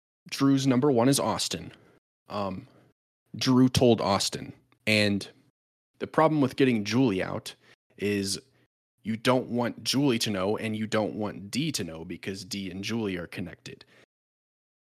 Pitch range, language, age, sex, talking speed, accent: 100-125 Hz, English, 20-39, male, 145 wpm, American